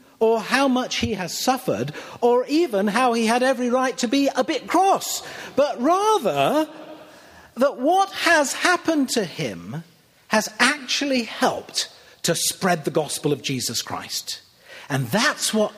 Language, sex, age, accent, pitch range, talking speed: English, male, 50-69, British, 155-245 Hz, 150 wpm